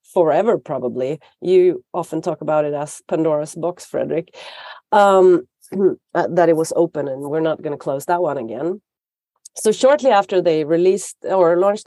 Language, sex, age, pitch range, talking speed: English, female, 40-59, 165-225 Hz, 160 wpm